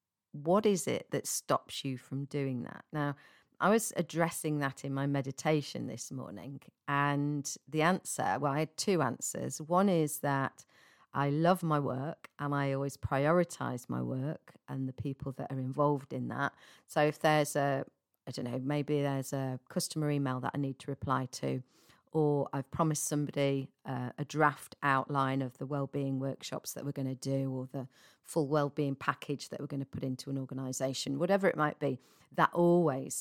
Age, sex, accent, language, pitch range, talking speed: 40-59, female, British, English, 135-155 Hz, 185 wpm